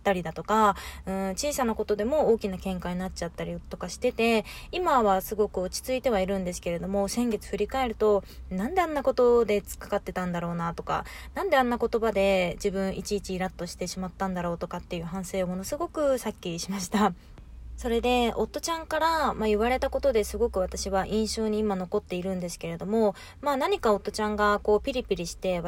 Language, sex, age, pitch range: Japanese, female, 20-39, 185-230 Hz